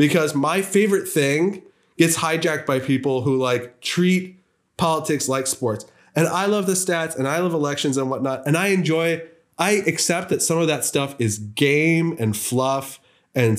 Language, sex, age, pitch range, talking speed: English, male, 20-39, 120-165 Hz, 175 wpm